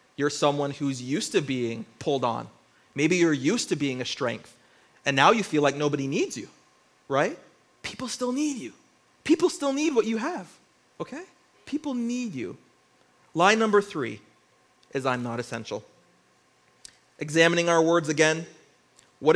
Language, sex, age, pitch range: English, male, 30-49, 130-180 Hz